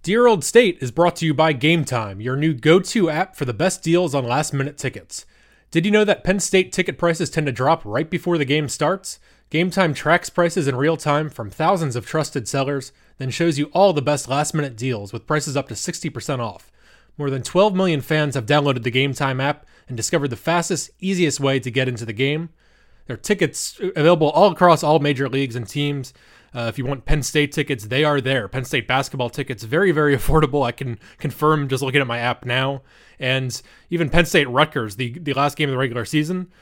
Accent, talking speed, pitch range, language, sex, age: American, 215 wpm, 130-160 Hz, English, male, 20-39